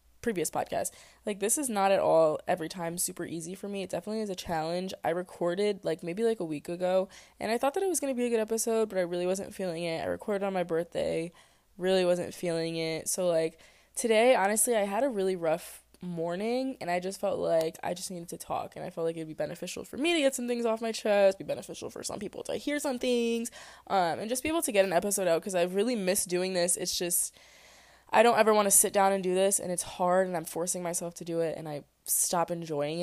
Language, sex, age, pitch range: English, female, 20-39, 170-210 Hz